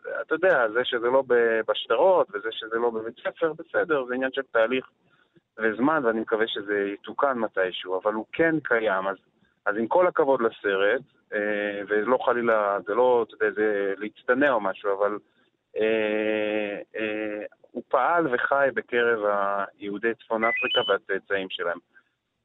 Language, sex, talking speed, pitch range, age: Hebrew, male, 140 wpm, 105-135 Hz, 30-49